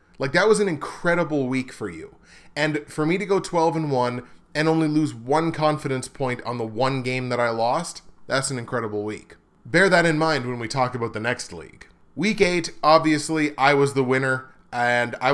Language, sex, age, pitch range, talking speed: English, male, 20-39, 125-160 Hz, 205 wpm